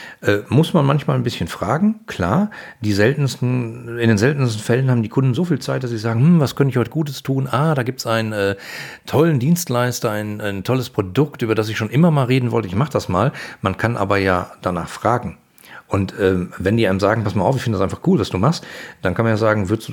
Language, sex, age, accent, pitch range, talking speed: German, male, 40-59, German, 100-135 Hz, 250 wpm